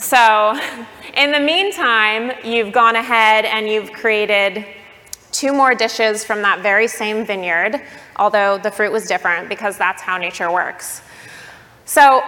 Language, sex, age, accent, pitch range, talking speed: English, female, 20-39, American, 200-230 Hz, 140 wpm